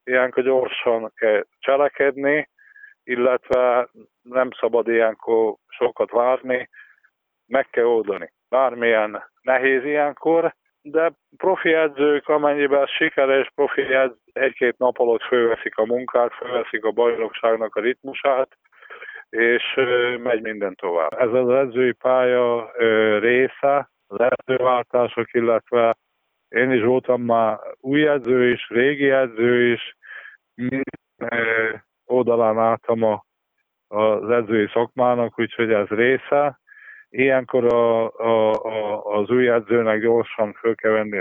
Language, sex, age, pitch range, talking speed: Hungarian, male, 50-69, 115-135 Hz, 110 wpm